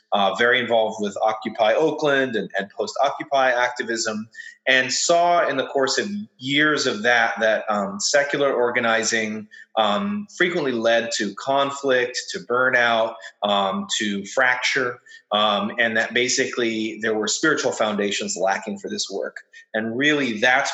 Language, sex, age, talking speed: English, male, 30-49, 140 wpm